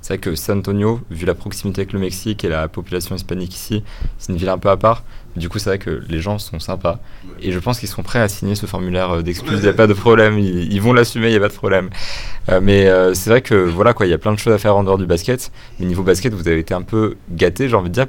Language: French